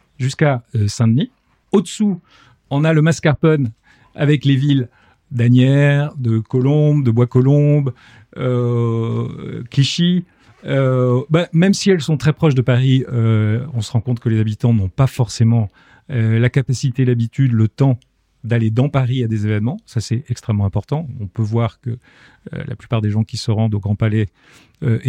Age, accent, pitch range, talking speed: 40-59, French, 115-145 Hz, 170 wpm